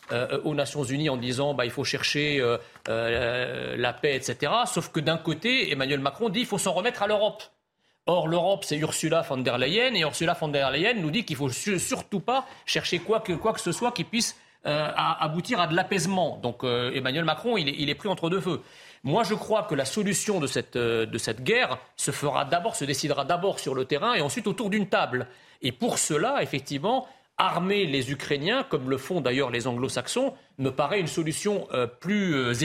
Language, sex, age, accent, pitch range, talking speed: French, male, 40-59, French, 135-200 Hz, 220 wpm